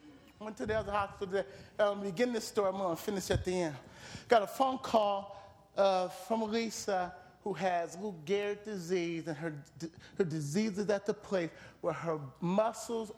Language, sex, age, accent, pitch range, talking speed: English, male, 40-59, American, 175-215 Hz, 180 wpm